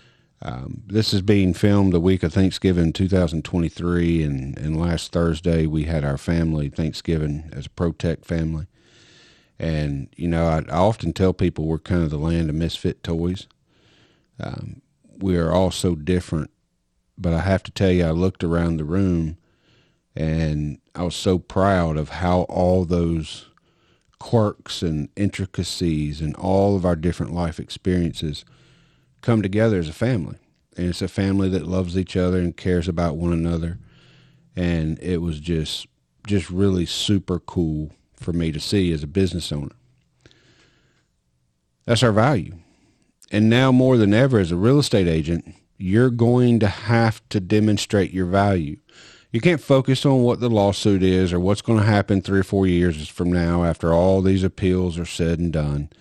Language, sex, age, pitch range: English, male, 40-59, 80-100 Hz